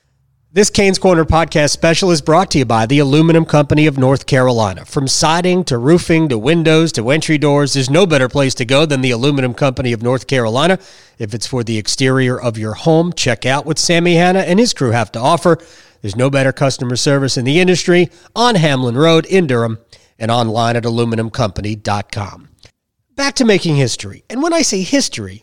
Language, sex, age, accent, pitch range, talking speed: English, male, 40-59, American, 125-185 Hz, 195 wpm